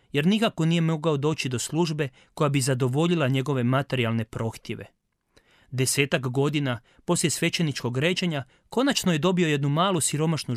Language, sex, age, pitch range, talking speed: Croatian, male, 30-49, 130-175 Hz, 135 wpm